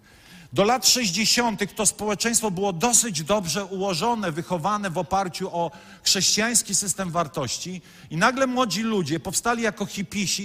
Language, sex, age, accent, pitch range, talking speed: Polish, male, 50-69, native, 180-225 Hz, 130 wpm